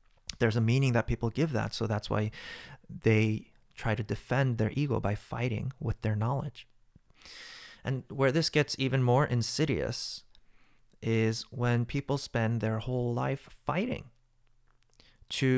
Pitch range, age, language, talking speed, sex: 110-125 Hz, 30-49, English, 145 wpm, male